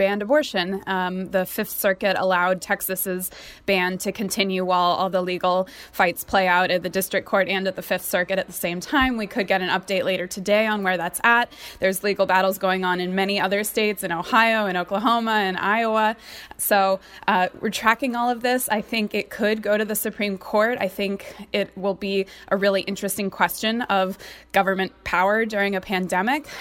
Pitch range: 190-215 Hz